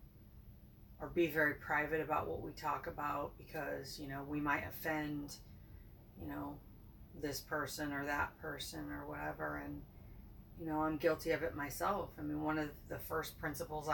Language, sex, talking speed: English, female, 170 wpm